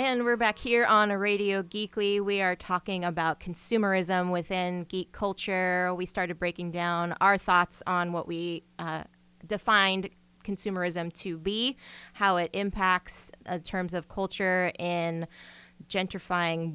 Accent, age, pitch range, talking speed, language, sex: American, 20-39, 175-205 Hz, 140 wpm, English, female